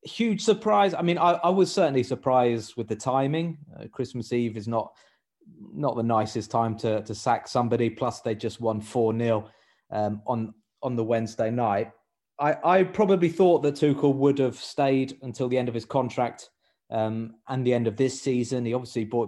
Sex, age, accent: male, 30-49, British